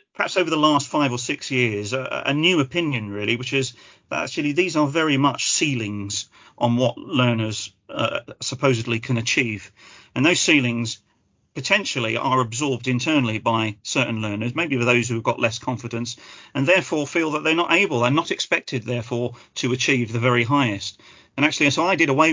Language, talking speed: English, 185 wpm